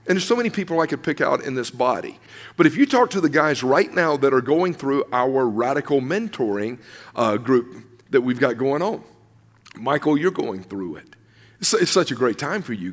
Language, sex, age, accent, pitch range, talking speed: English, male, 50-69, American, 135-170 Hz, 225 wpm